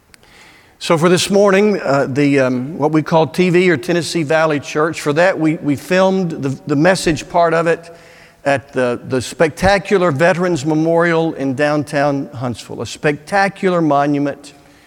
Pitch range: 150-195 Hz